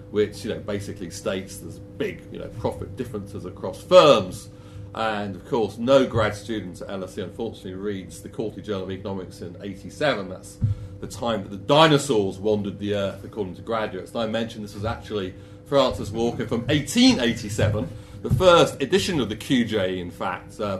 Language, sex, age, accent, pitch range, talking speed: English, male, 40-59, British, 95-110 Hz, 175 wpm